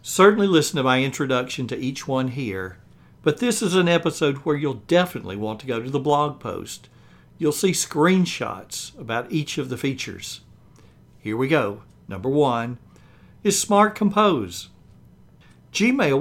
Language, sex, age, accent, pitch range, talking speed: English, male, 60-79, American, 115-165 Hz, 150 wpm